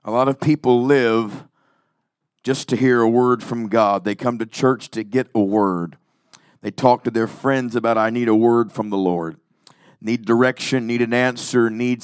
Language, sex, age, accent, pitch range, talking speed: English, male, 50-69, American, 120-145 Hz, 195 wpm